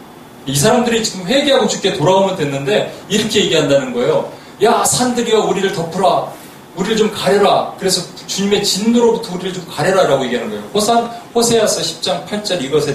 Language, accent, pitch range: Korean, native, 130-195 Hz